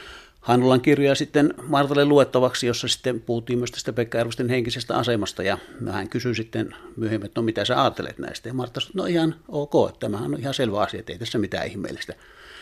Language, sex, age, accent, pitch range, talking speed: Finnish, male, 60-79, native, 110-125 Hz, 190 wpm